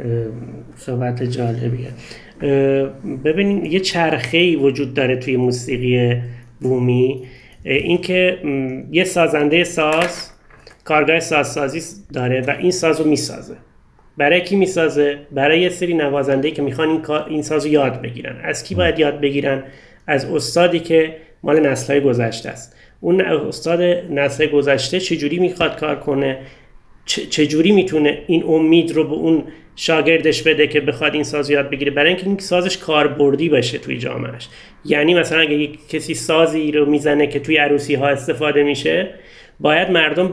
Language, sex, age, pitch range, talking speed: English, male, 30-49, 140-165 Hz, 145 wpm